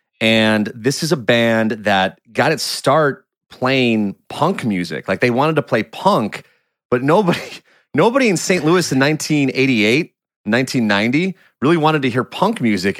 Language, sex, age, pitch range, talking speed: English, male, 30-49, 100-140 Hz, 150 wpm